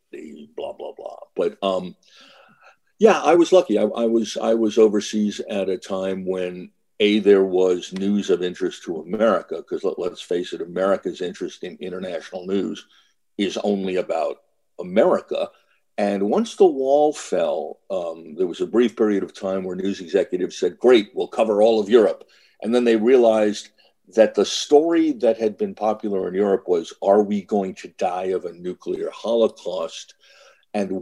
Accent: American